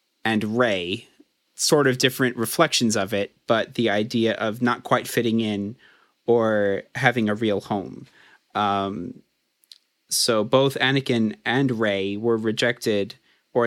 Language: English